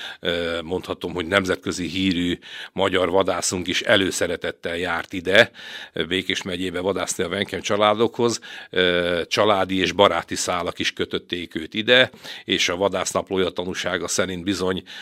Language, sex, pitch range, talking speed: Hungarian, male, 90-100 Hz, 120 wpm